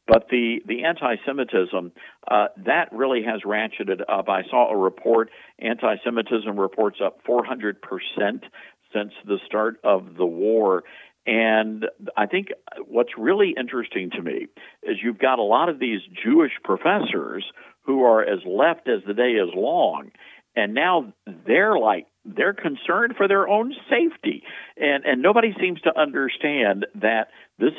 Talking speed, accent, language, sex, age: 150 wpm, American, English, male, 60-79